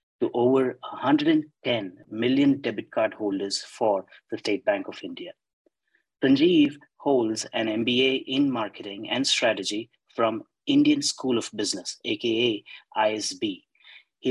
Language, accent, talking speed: English, Indian, 120 wpm